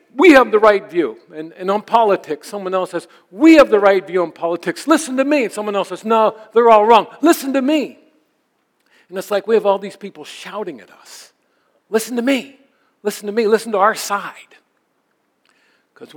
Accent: American